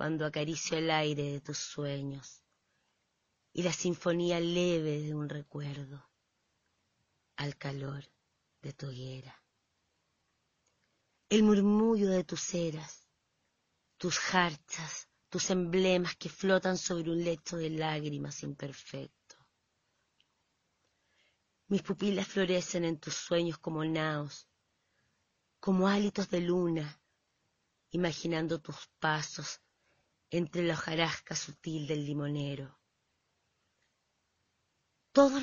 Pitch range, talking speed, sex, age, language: 145-175 Hz, 100 wpm, female, 30-49, Spanish